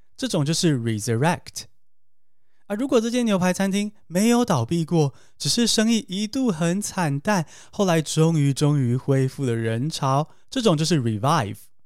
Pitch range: 135-195 Hz